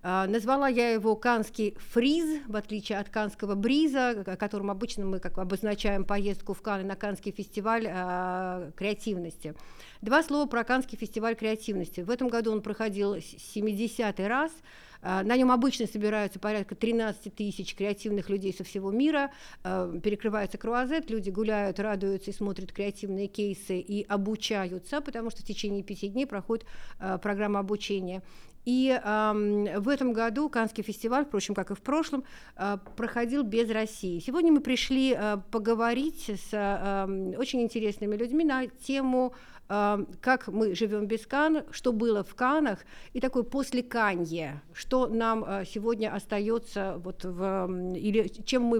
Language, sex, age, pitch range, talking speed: Russian, female, 50-69, 200-235 Hz, 145 wpm